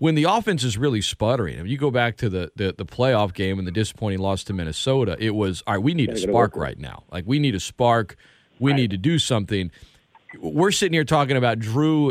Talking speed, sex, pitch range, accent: 240 wpm, male, 110-150 Hz, American